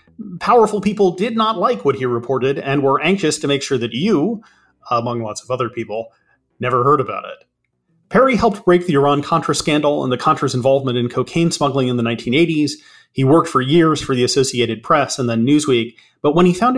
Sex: male